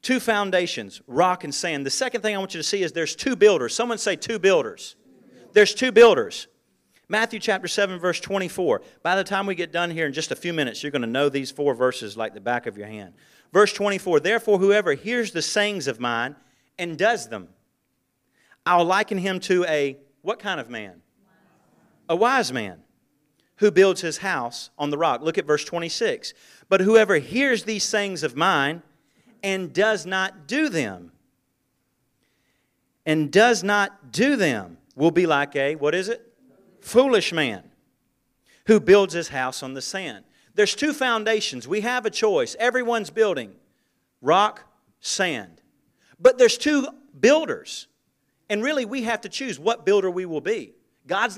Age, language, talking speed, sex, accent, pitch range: 40-59, English, 175 wpm, male, American, 160-230 Hz